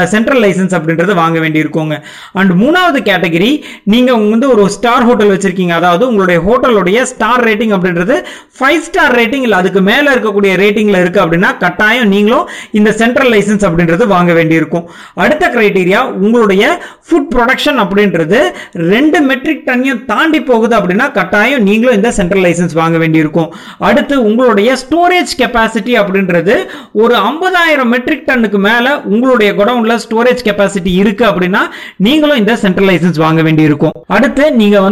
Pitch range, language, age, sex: 185-255 Hz, Tamil, 30-49, male